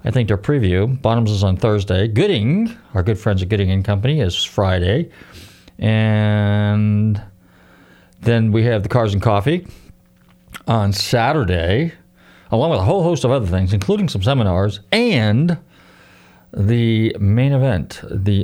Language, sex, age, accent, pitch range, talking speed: English, male, 40-59, American, 100-135 Hz, 145 wpm